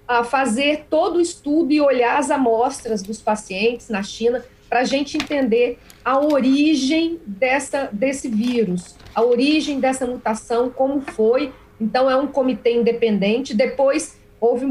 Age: 40-59